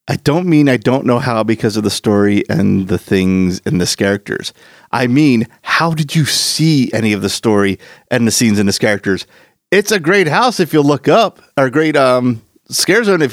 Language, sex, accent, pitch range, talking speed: English, male, American, 130-210 Hz, 215 wpm